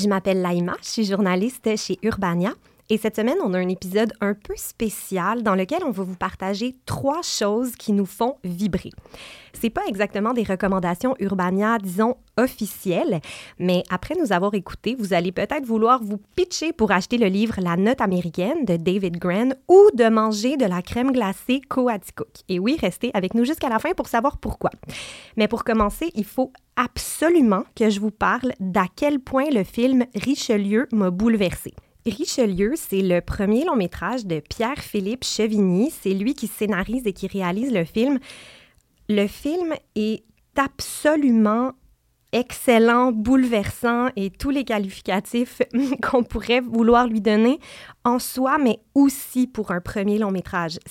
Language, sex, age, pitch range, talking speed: French, female, 30-49, 195-255 Hz, 165 wpm